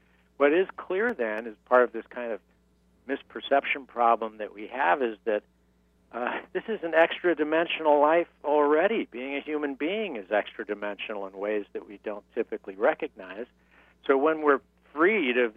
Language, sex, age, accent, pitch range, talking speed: English, male, 60-79, American, 85-140 Hz, 160 wpm